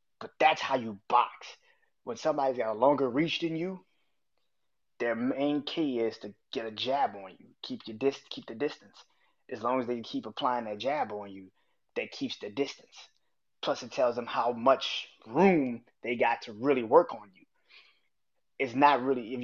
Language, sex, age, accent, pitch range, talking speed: English, male, 20-39, American, 120-160 Hz, 190 wpm